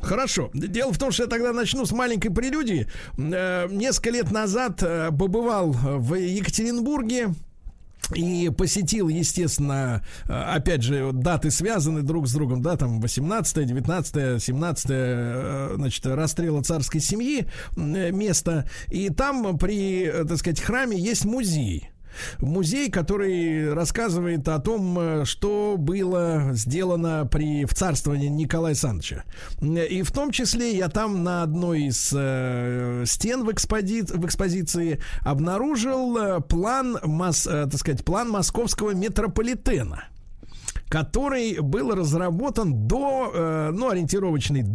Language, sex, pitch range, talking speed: Russian, male, 150-215 Hz, 115 wpm